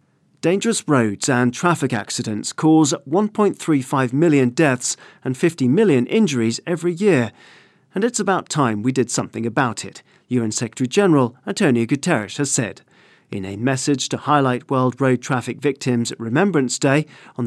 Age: 40-59